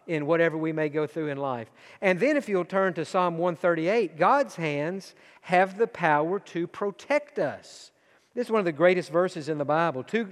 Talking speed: 205 wpm